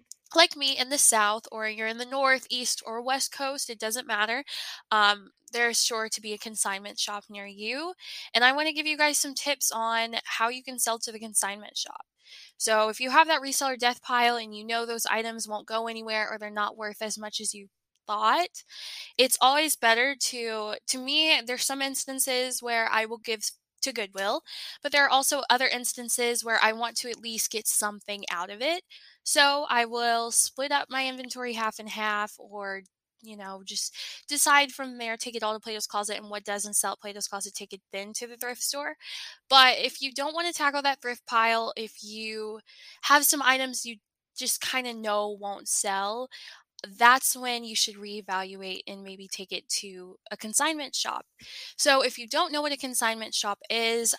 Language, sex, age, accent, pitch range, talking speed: English, female, 10-29, American, 215-265 Hz, 205 wpm